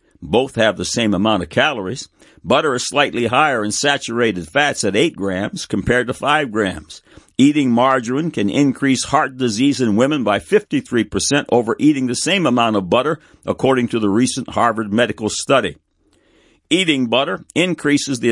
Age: 60-79